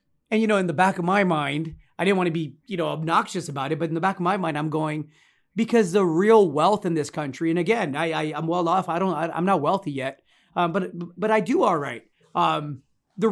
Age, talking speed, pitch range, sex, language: 30-49, 260 wpm, 160-210 Hz, male, English